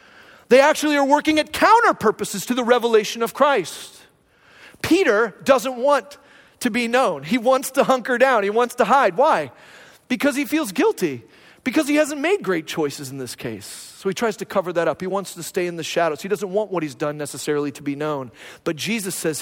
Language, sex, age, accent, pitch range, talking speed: English, male, 40-59, American, 185-255 Hz, 210 wpm